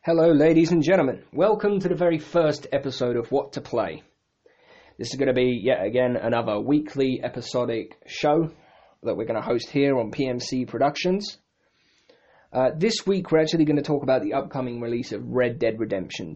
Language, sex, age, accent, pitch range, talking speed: English, male, 20-39, British, 115-150 Hz, 185 wpm